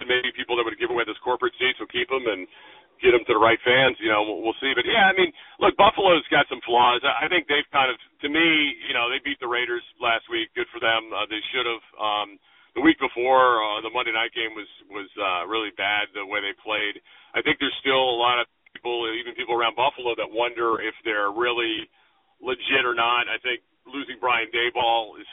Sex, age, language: male, 40-59, English